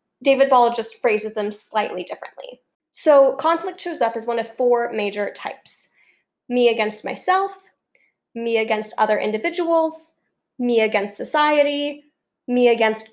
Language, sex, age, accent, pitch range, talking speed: English, female, 10-29, American, 230-310 Hz, 135 wpm